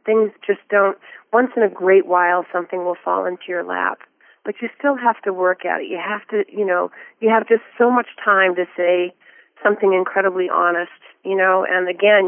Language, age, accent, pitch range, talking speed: English, 40-59, American, 175-205 Hz, 205 wpm